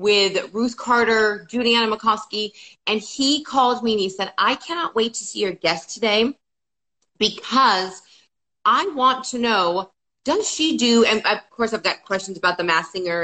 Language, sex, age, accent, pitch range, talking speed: English, female, 30-49, American, 210-290 Hz, 170 wpm